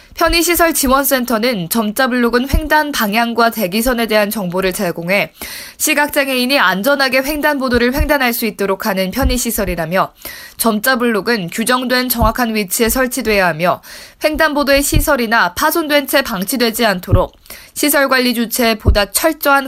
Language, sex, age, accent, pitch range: Korean, female, 20-39, native, 210-290 Hz